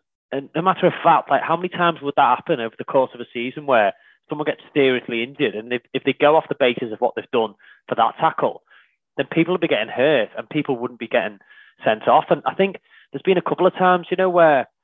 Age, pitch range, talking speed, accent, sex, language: 20-39, 120-165 Hz, 260 wpm, British, male, English